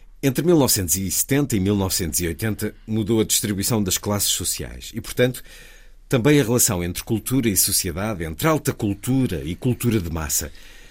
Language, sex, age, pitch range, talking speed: Portuguese, male, 50-69, 95-125 Hz, 145 wpm